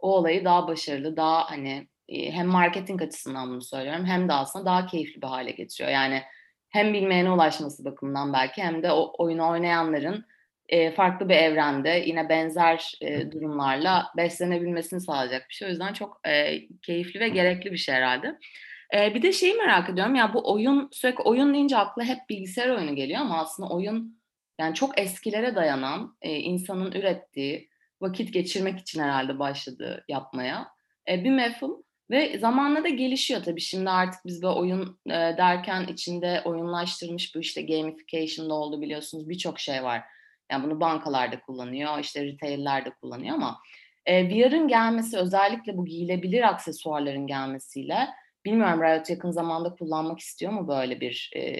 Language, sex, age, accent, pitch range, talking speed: Turkish, female, 30-49, native, 155-195 Hz, 150 wpm